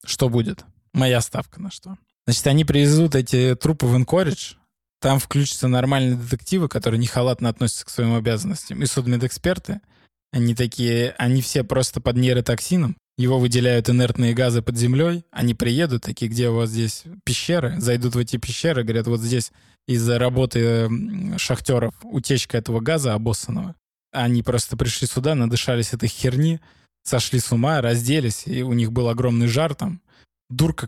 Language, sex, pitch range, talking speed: Russian, male, 115-135 Hz, 155 wpm